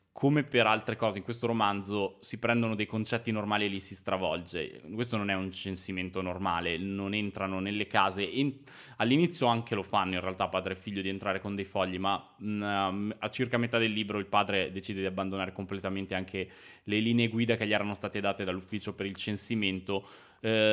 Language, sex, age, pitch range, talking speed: Italian, male, 20-39, 95-115 Hz, 190 wpm